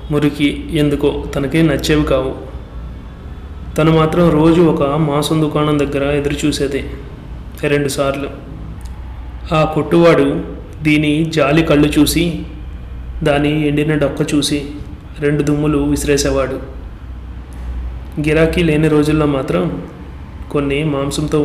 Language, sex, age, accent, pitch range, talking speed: Telugu, male, 30-49, native, 135-150 Hz, 90 wpm